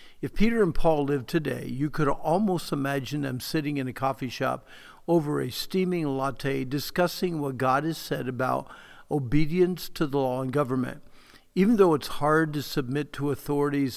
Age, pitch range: 50-69, 140-175 Hz